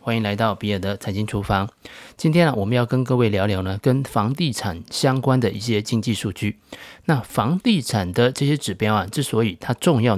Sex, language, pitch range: male, Chinese, 105-140 Hz